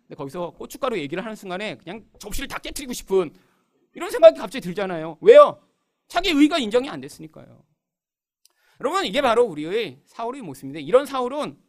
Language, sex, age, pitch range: Korean, male, 40-59, 160-260 Hz